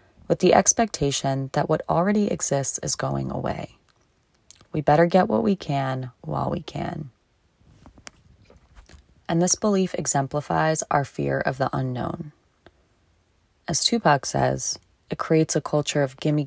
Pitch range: 130-165 Hz